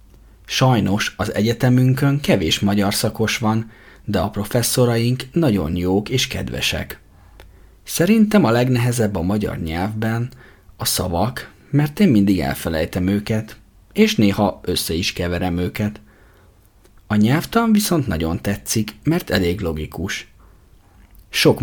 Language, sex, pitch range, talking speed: Hungarian, male, 95-115 Hz, 115 wpm